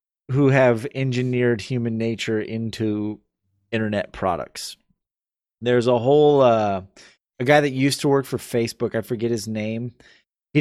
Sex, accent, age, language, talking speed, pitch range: male, American, 30-49, English, 140 wpm, 100-130 Hz